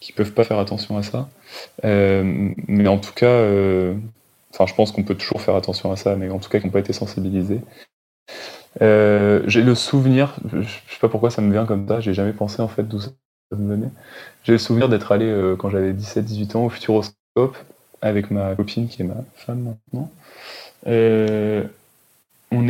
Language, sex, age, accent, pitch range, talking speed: French, male, 20-39, French, 100-115 Hz, 205 wpm